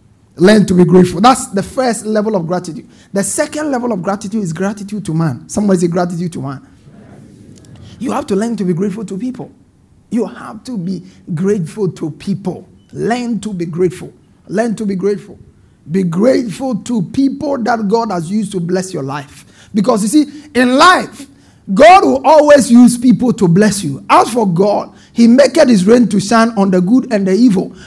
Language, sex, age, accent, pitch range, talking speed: English, male, 50-69, Nigerian, 190-250 Hz, 190 wpm